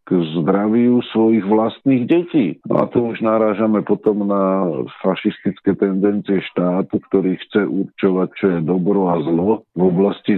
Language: Slovak